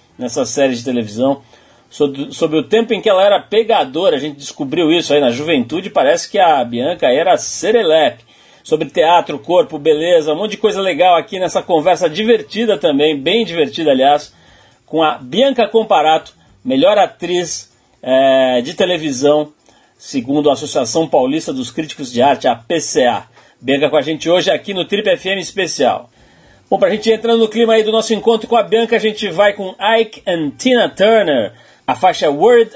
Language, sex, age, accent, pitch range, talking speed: Portuguese, male, 40-59, Brazilian, 150-220 Hz, 175 wpm